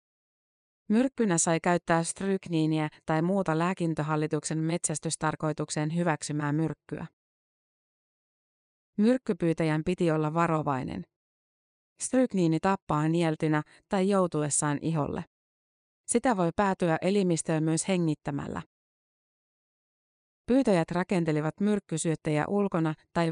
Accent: native